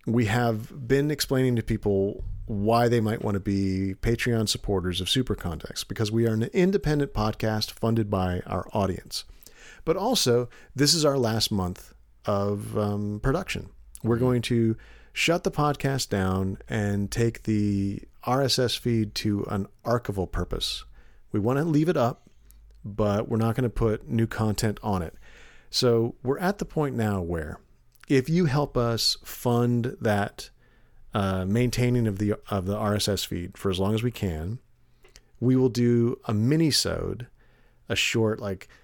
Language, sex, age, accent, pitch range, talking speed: English, male, 40-59, American, 100-125 Hz, 160 wpm